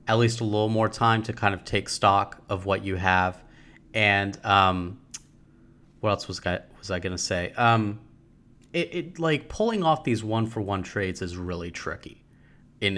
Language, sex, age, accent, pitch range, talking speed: English, male, 30-49, American, 90-115 Hz, 185 wpm